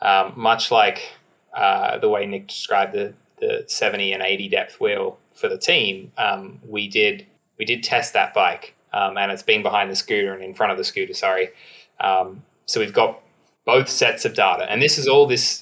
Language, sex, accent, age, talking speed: English, male, Australian, 20-39, 205 wpm